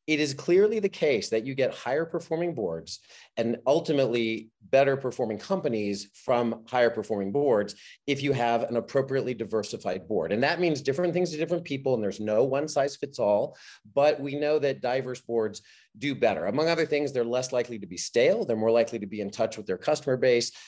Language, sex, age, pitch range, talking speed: English, male, 40-59, 110-155 Hz, 205 wpm